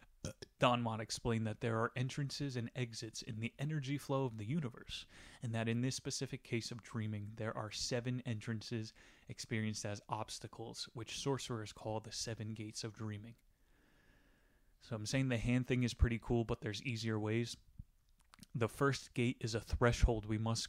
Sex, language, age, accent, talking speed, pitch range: male, English, 30-49, American, 175 wpm, 110-125 Hz